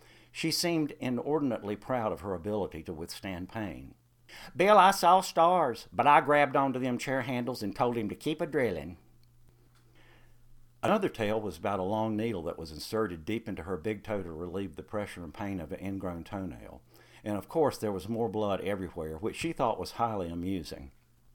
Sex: male